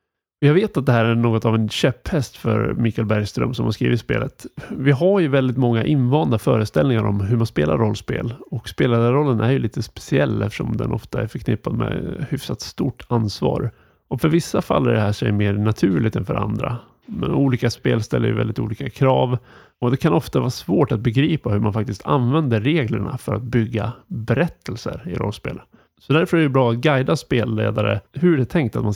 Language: Swedish